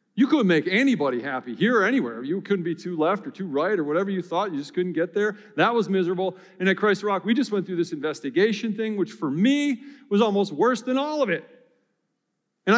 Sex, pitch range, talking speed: male, 160-245 Hz, 240 wpm